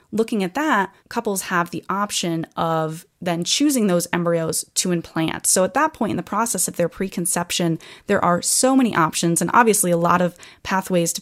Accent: American